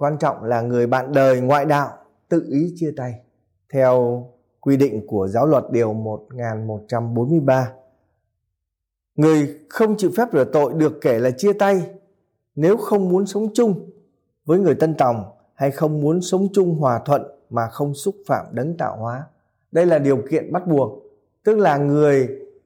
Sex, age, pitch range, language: male, 20-39, 120-170 Hz, Vietnamese